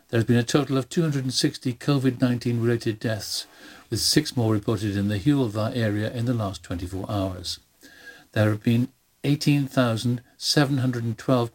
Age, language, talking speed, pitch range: 60-79, English, 135 wpm, 105-135 Hz